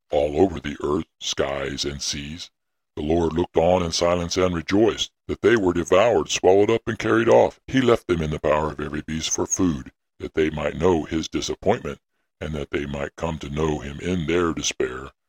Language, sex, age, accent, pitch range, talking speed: English, female, 60-79, American, 75-90 Hz, 205 wpm